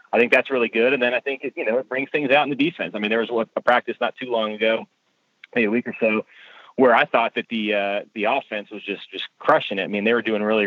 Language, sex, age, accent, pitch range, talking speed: English, male, 30-49, American, 105-120 Hz, 300 wpm